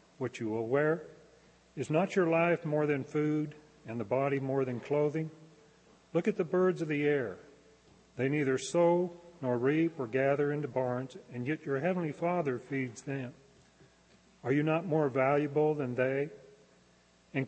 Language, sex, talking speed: English, male, 165 wpm